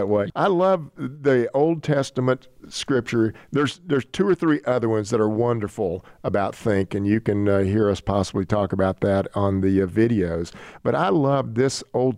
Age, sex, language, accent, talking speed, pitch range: 50-69, male, English, American, 185 wpm, 110-155 Hz